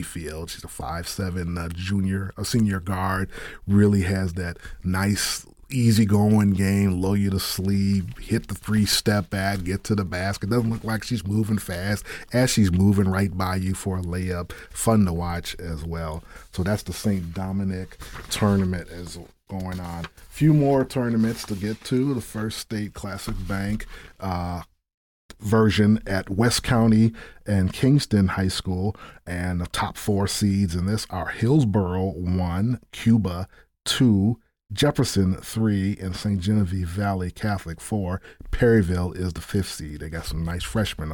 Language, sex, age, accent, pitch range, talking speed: English, male, 30-49, American, 90-105 Hz, 160 wpm